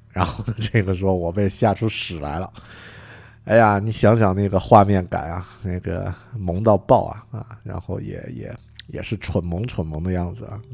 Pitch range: 95-130 Hz